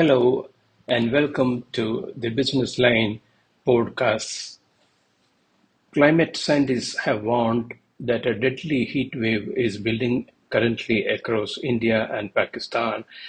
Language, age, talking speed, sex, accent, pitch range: English, 60-79, 110 wpm, male, Indian, 115-130 Hz